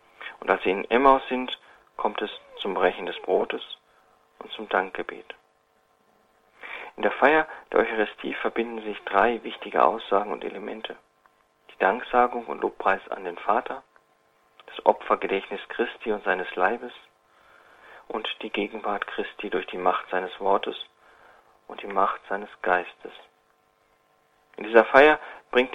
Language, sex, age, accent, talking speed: German, male, 40-59, German, 135 wpm